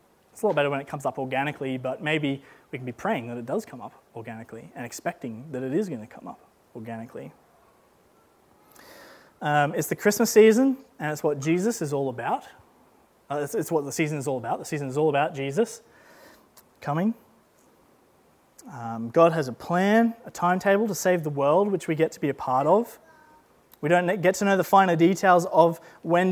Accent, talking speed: Australian, 200 wpm